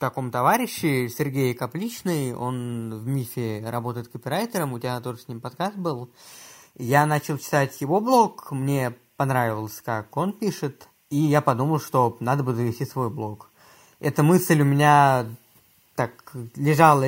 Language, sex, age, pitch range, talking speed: Russian, male, 20-39, 125-155 Hz, 150 wpm